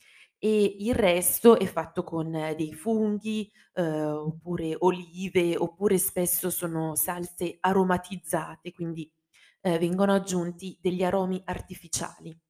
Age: 20-39